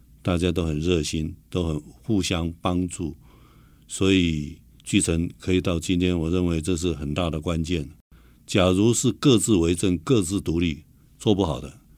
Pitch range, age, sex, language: 80-100 Hz, 60-79, male, Chinese